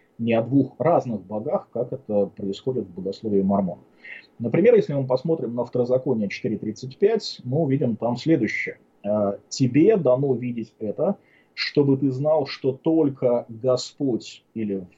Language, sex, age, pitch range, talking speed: English, male, 30-49, 110-135 Hz, 135 wpm